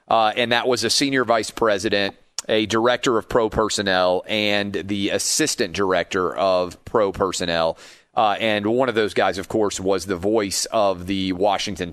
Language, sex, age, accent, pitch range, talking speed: English, male, 40-59, American, 105-130 Hz, 170 wpm